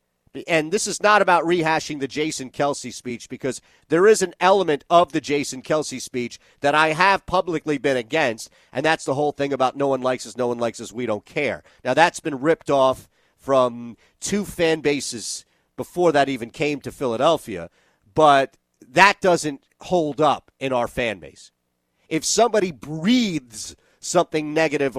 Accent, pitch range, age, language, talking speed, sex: American, 125-175 Hz, 40-59, English, 175 wpm, male